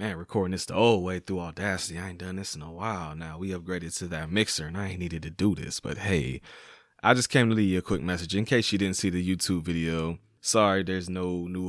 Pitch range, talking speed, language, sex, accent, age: 90-110 Hz, 260 wpm, English, male, American, 20-39